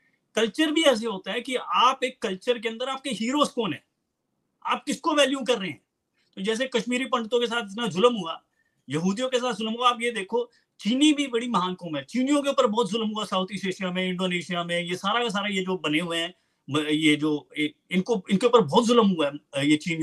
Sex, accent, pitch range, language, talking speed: male, Indian, 190-255 Hz, English, 195 wpm